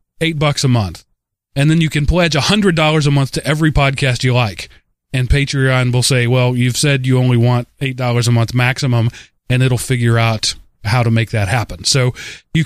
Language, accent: English, American